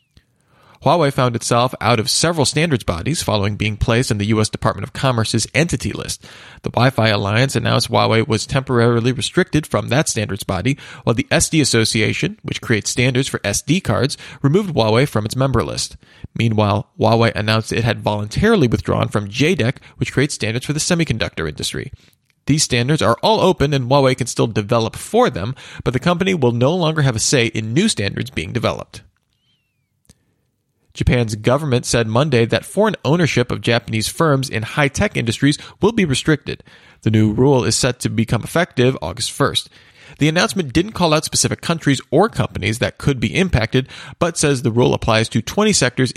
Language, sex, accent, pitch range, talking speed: English, male, American, 110-140 Hz, 175 wpm